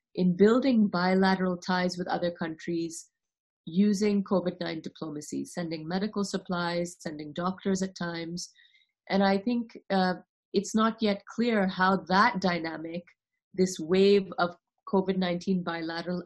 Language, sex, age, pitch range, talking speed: English, female, 30-49, 165-195 Hz, 130 wpm